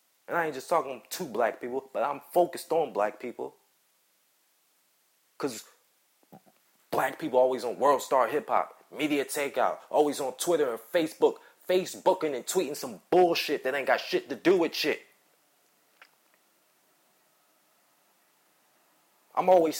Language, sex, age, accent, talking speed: English, male, 30-49, American, 135 wpm